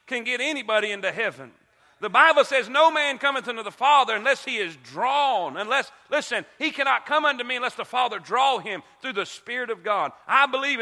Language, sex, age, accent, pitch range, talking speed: English, male, 40-59, American, 230-285 Hz, 205 wpm